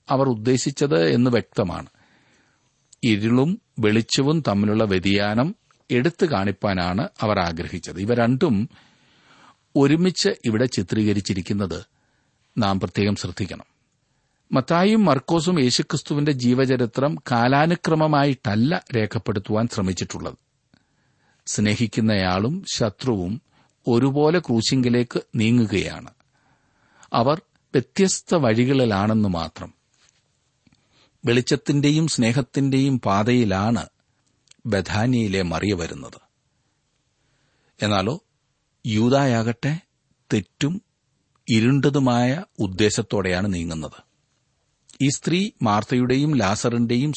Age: 50-69